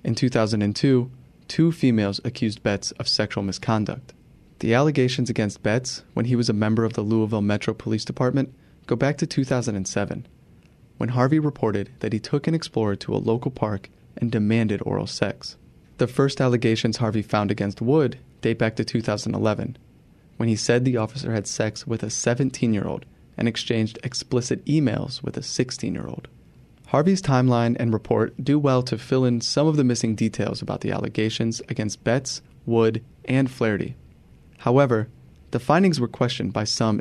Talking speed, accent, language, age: 165 wpm, American, English, 30-49